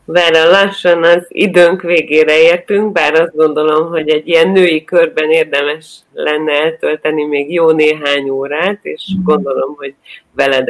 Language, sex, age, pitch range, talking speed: Hungarian, female, 30-49, 135-165 Hz, 145 wpm